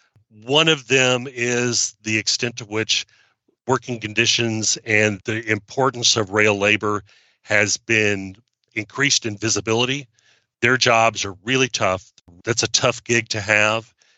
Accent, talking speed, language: American, 135 wpm, English